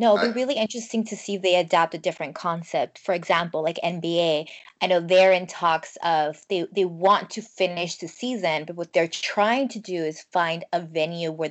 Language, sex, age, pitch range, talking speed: English, female, 20-39, 175-210 Hz, 215 wpm